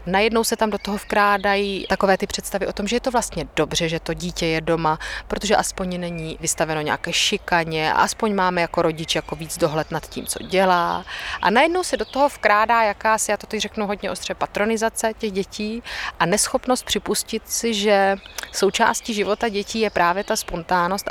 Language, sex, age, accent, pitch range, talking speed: Czech, female, 30-49, native, 180-215 Hz, 190 wpm